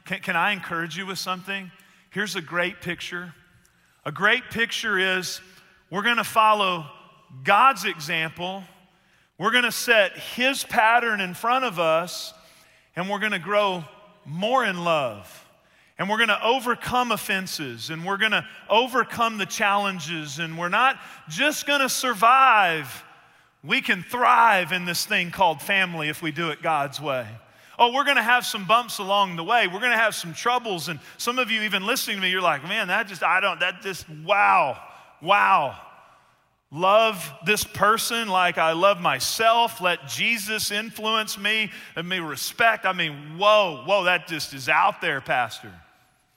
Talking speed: 160 wpm